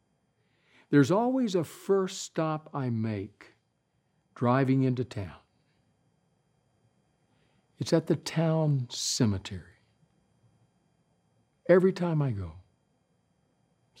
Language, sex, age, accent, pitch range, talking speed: English, male, 60-79, American, 120-160 Hz, 85 wpm